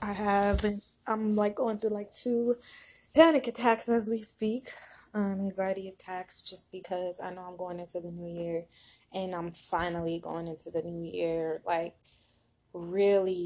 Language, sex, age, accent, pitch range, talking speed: English, female, 20-39, American, 180-195 Hz, 165 wpm